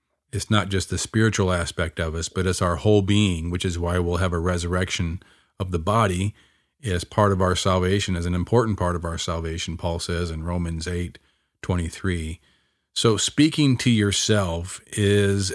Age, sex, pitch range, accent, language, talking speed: 40-59, male, 90-110 Hz, American, English, 180 wpm